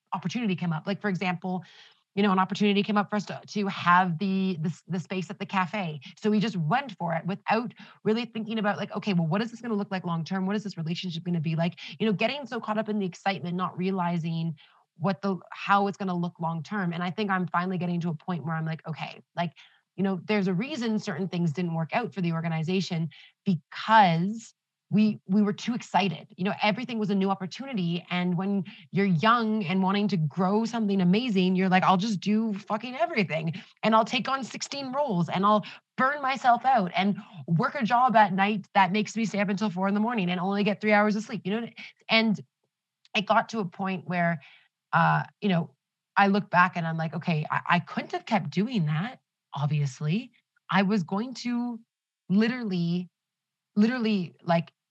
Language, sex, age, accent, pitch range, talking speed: English, female, 30-49, American, 175-215 Hz, 215 wpm